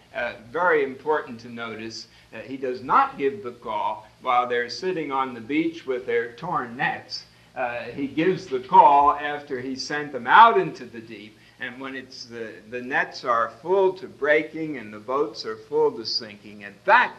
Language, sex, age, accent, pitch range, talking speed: English, male, 60-79, American, 130-215 Hz, 190 wpm